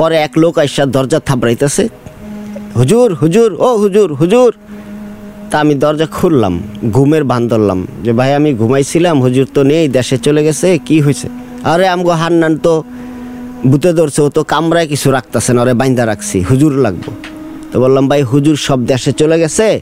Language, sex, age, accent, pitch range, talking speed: English, male, 50-69, Indian, 130-205 Hz, 95 wpm